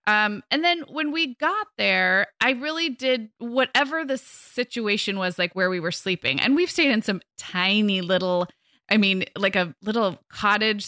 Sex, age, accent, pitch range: female, 20-39, American, 180-235 Hz